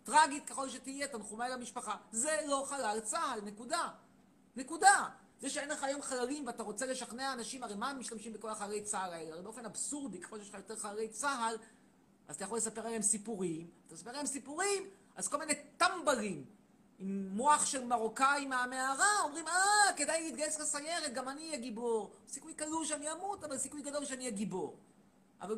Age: 40-59